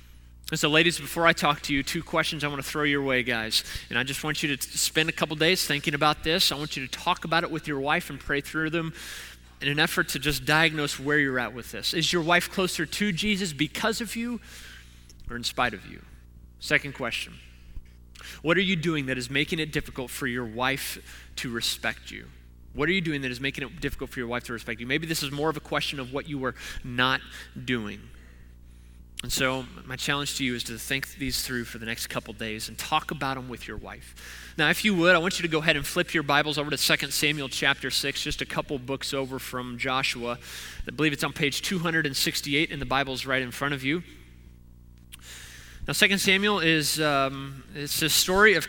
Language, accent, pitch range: English, American, 125-165 Hz